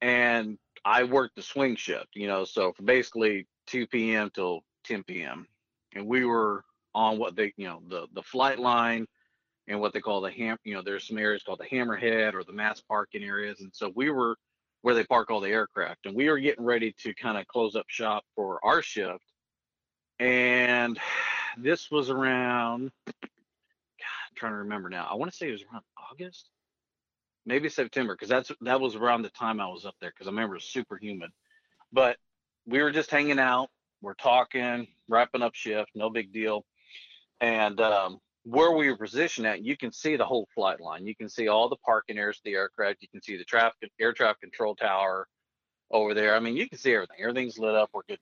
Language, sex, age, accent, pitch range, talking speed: English, male, 40-59, American, 105-130 Hz, 210 wpm